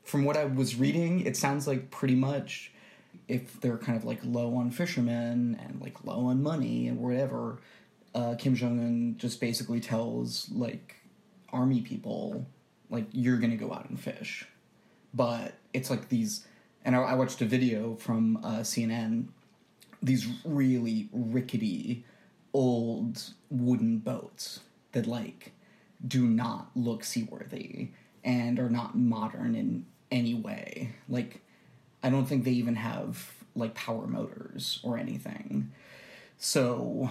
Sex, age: male, 20-39